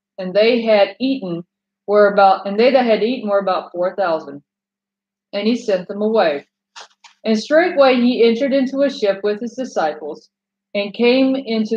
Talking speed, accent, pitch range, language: 170 wpm, American, 195-240 Hz, English